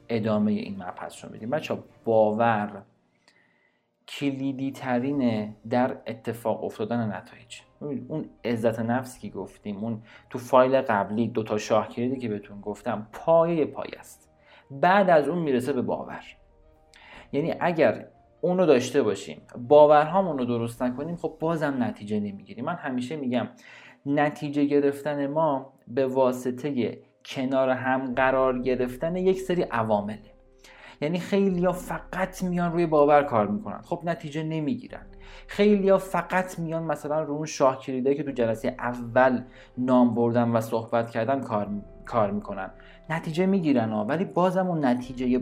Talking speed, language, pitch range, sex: 140 wpm, Persian, 115-160 Hz, male